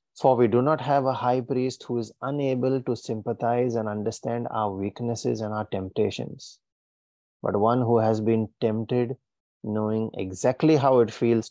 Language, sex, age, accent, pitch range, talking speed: English, male, 30-49, Indian, 105-120 Hz, 160 wpm